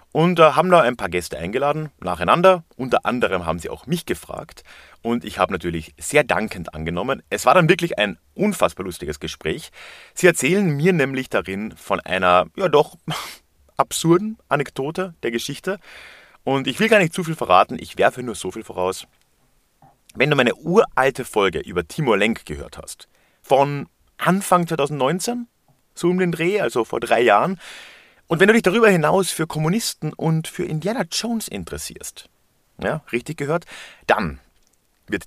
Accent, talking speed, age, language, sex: German, 165 wpm, 30-49, German, male